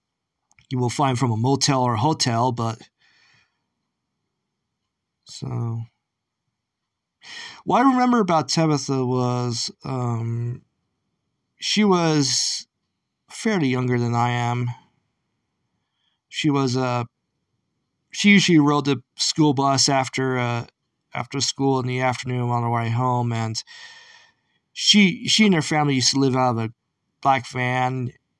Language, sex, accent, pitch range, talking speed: English, male, American, 120-145 Hz, 125 wpm